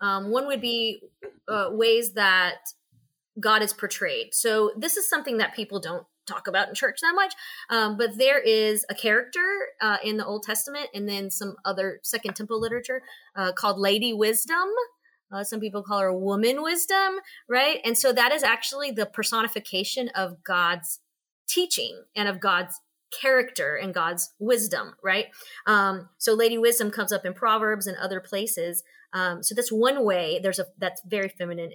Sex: female